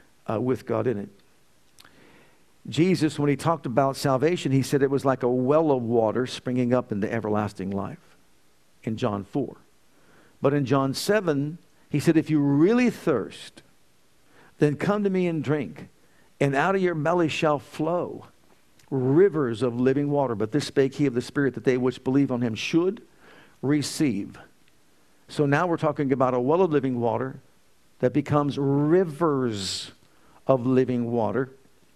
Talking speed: 165 wpm